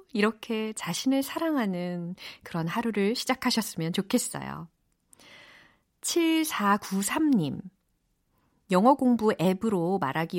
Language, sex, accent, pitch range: Korean, female, native, 175-265 Hz